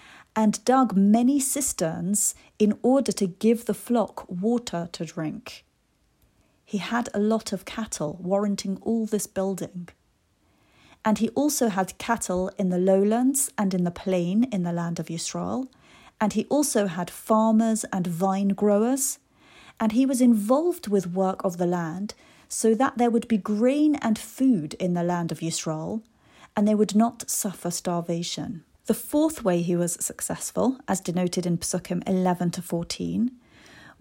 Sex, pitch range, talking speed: female, 180-230 Hz, 155 wpm